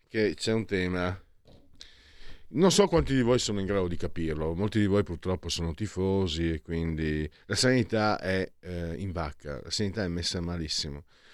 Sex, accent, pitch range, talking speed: male, native, 80-105 Hz, 175 wpm